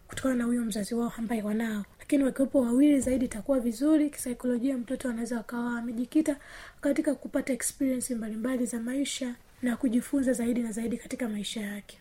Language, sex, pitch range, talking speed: Swahili, female, 235-270 Hz, 165 wpm